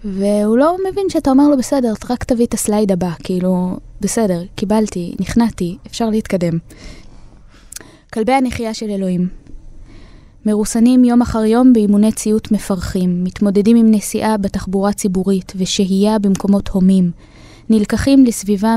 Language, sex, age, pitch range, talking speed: Hebrew, female, 20-39, 190-220 Hz, 125 wpm